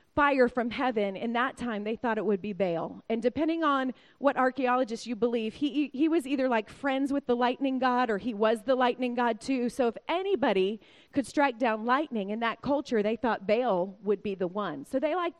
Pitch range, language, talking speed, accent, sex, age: 225-285 Hz, English, 220 wpm, American, female, 30-49